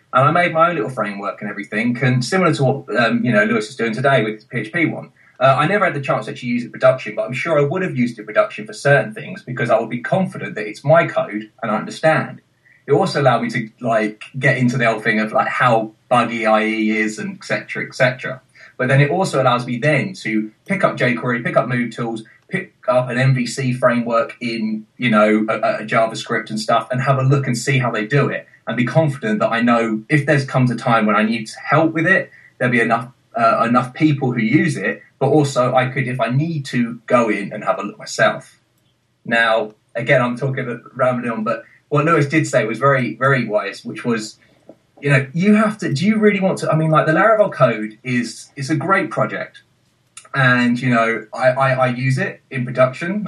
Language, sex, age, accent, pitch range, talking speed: English, male, 20-39, British, 115-145 Hz, 240 wpm